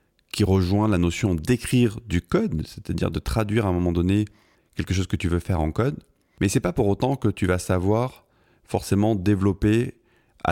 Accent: French